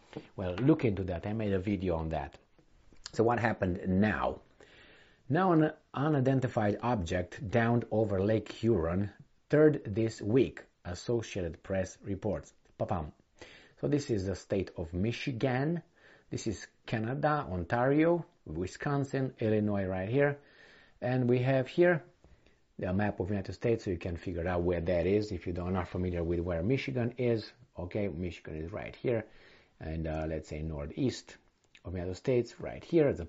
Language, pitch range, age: English, 90-130 Hz, 50-69